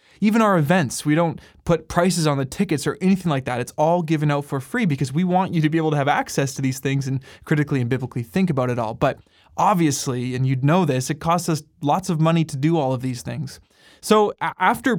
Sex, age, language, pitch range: male, 20-39, English, 135-170 Hz